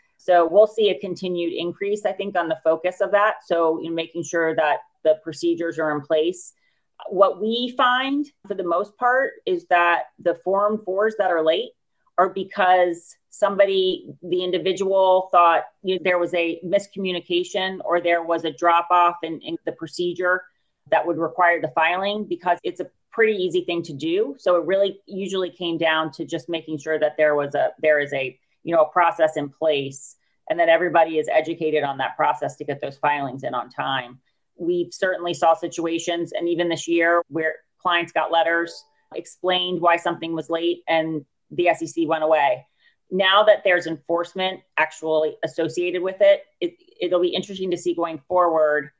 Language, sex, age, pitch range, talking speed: English, female, 30-49, 160-185 Hz, 180 wpm